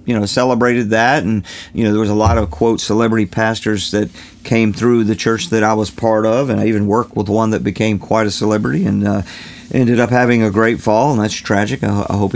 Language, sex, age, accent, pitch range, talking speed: English, male, 50-69, American, 110-145 Hz, 240 wpm